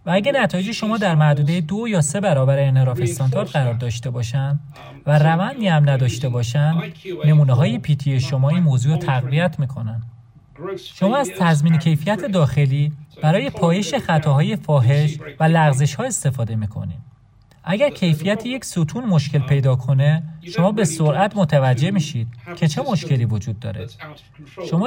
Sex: male